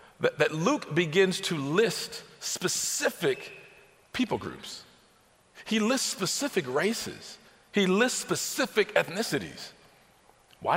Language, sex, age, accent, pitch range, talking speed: English, male, 50-69, American, 125-175 Hz, 95 wpm